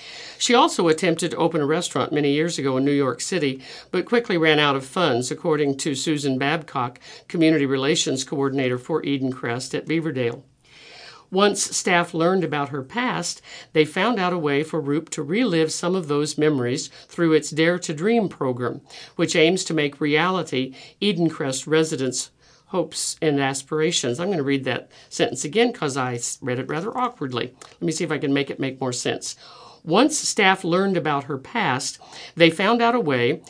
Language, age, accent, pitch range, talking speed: English, 50-69, American, 140-180 Hz, 180 wpm